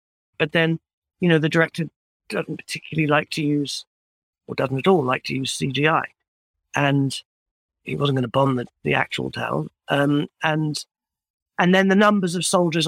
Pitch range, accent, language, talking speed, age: 140-190 Hz, British, English, 170 wpm, 40-59